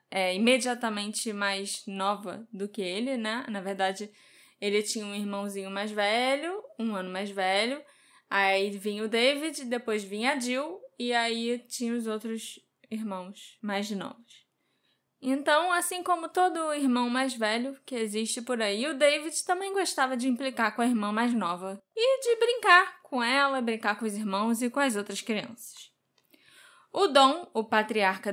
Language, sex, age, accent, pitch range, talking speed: Portuguese, female, 10-29, Brazilian, 220-295 Hz, 160 wpm